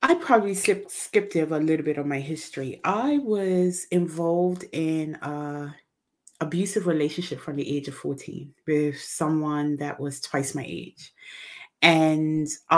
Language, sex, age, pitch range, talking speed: English, female, 30-49, 145-170 Hz, 140 wpm